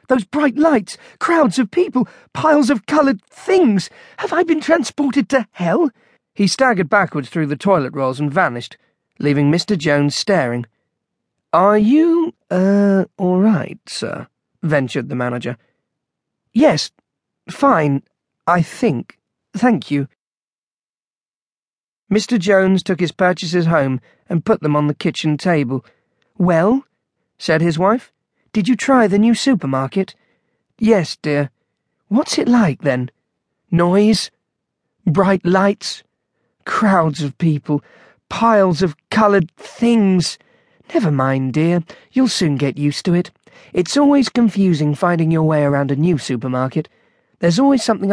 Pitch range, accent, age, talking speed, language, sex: 145-220 Hz, British, 40-59, 130 wpm, English, male